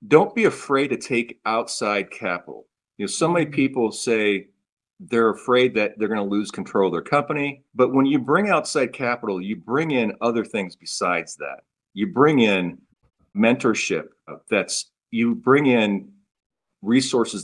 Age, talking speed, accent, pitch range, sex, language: 50-69, 160 wpm, American, 95-120 Hz, male, English